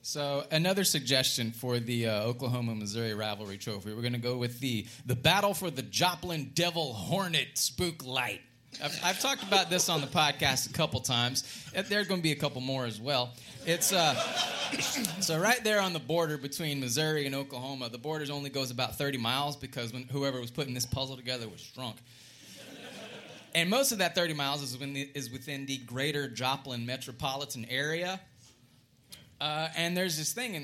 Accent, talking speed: American, 185 wpm